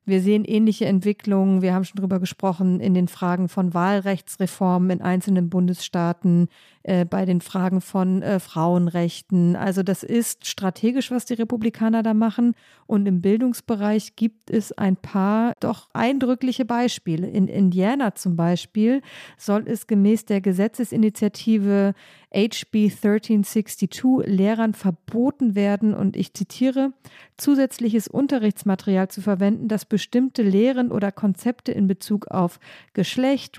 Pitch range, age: 190-225 Hz, 50-69